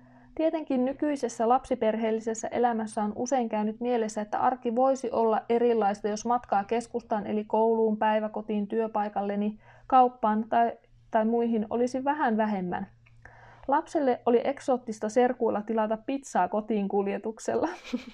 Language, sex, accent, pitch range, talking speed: Finnish, female, native, 220-250 Hz, 115 wpm